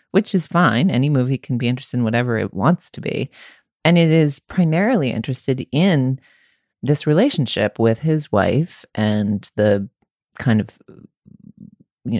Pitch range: 105-140 Hz